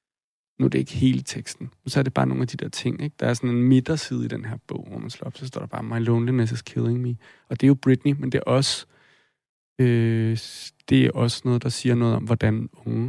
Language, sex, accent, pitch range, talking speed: Danish, male, native, 115-135 Hz, 265 wpm